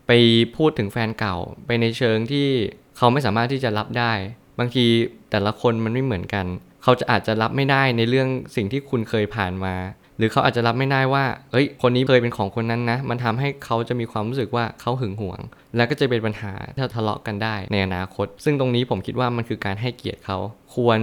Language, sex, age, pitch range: Thai, male, 20-39, 105-130 Hz